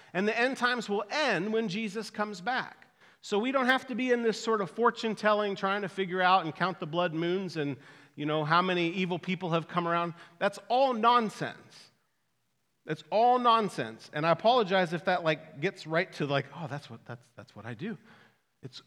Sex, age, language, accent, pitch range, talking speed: male, 40-59, English, American, 175-245 Hz, 210 wpm